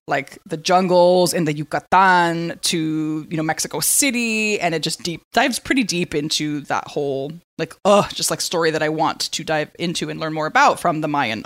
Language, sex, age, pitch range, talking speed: English, female, 20-39, 155-195 Hz, 205 wpm